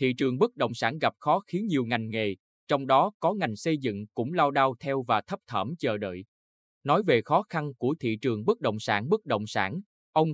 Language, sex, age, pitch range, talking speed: Vietnamese, male, 20-39, 115-155 Hz, 230 wpm